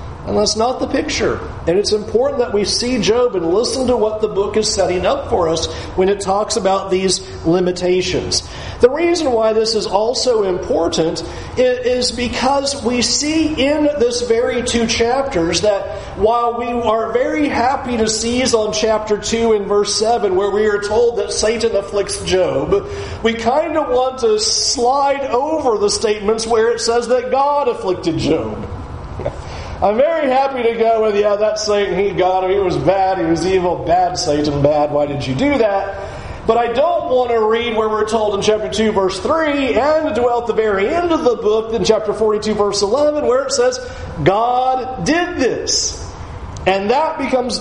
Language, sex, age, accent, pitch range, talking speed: English, male, 40-59, American, 185-265 Hz, 185 wpm